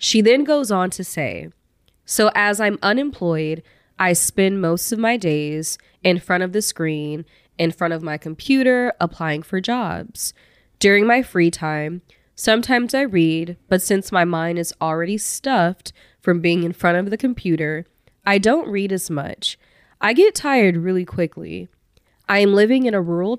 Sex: female